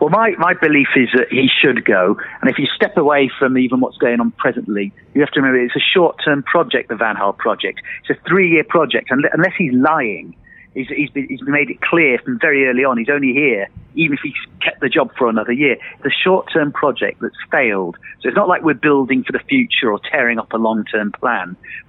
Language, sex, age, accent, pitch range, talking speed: English, male, 40-59, British, 115-135 Hz, 230 wpm